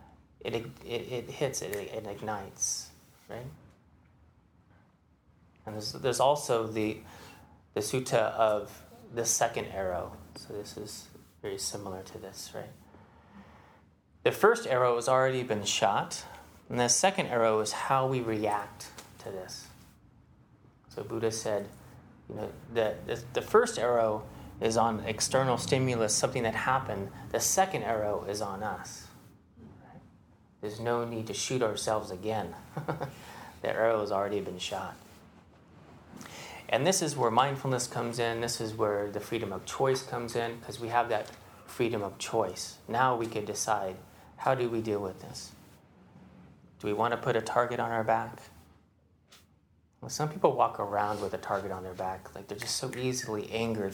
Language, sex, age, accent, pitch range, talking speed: English, male, 30-49, American, 100-125 Hz, 155 wpm